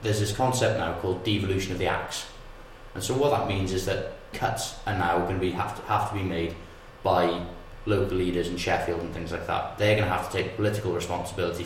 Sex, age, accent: male, 20-39, British